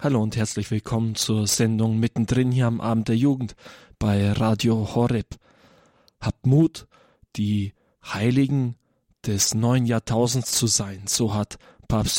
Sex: male